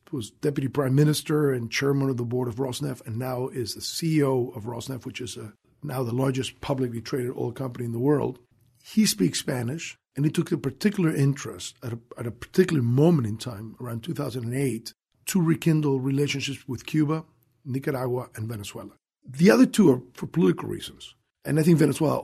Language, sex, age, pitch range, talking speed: English, male, 50-69, 125-150 Hz, 180 wpm